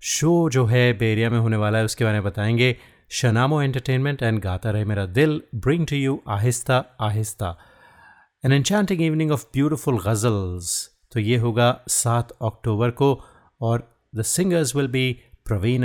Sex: male